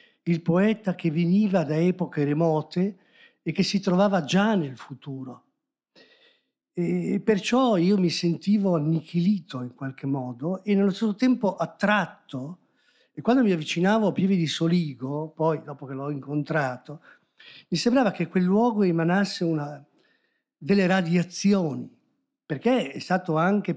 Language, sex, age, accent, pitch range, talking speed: Italian, male, 50-69, native, 155-200 Hz, 130 wpm